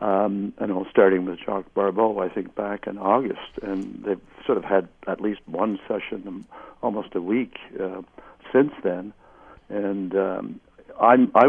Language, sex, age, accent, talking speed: English, male, 60-79, American, 165 wpm